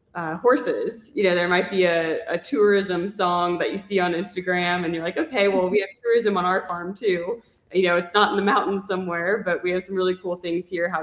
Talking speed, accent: 245 wpm, American